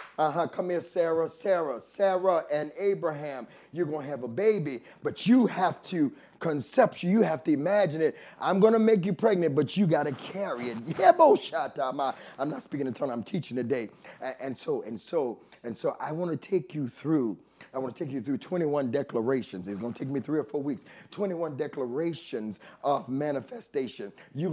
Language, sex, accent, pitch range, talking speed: English, male, American, 145-200 Hz, 195 wpm